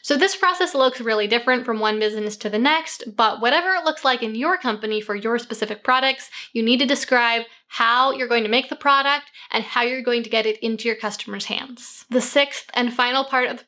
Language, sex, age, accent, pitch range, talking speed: English, female, 10-29, American, 225-270 Hz, 235 wpm